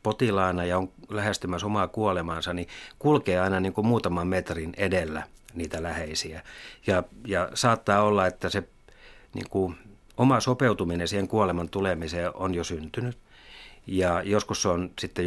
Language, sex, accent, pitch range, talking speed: Finnish, male, native, 90-115 Hz, 145 wpm